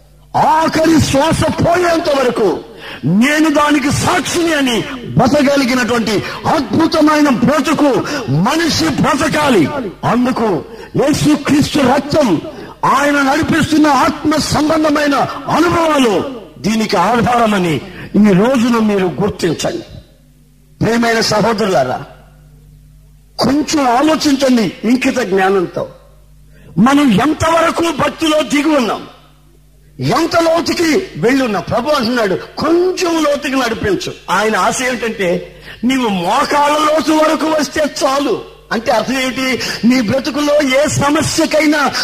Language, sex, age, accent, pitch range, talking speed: Telugu, male, 50-69, native, 230-305 Hz, 90 wpm